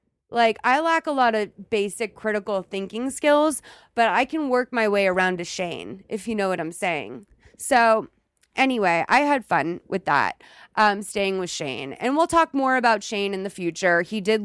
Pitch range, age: 180-255 Hz, 20-39